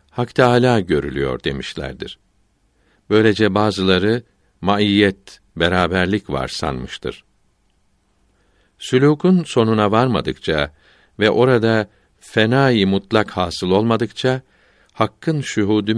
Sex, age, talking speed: male, 60-79, 80 wpm